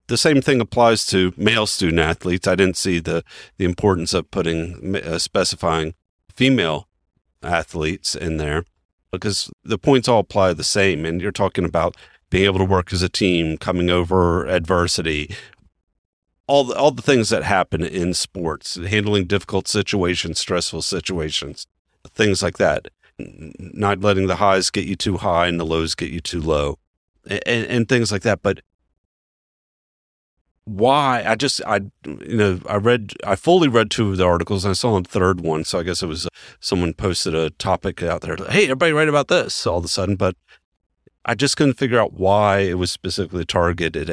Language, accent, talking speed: English, American, 180 wpm